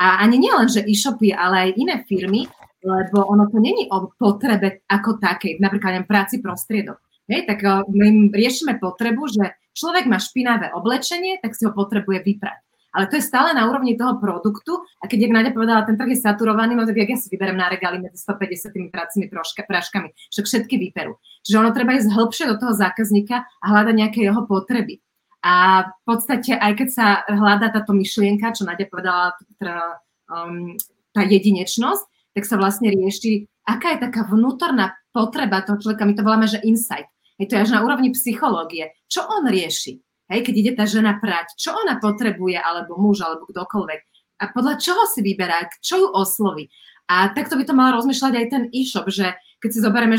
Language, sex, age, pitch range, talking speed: Slovak, female, 30-49, 195-235 Hz, 190 wpm